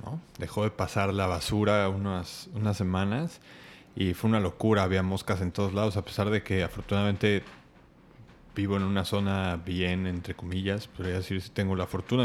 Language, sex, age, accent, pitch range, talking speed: Spanish, male, 20-39, Mexican, 95-115 Hz, 190 wpm